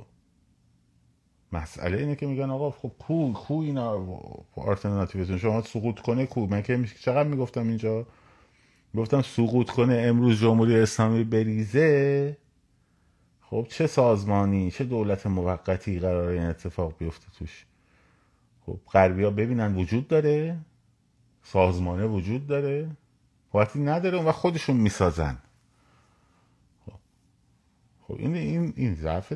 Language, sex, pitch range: Persian, male, 90-135 Hz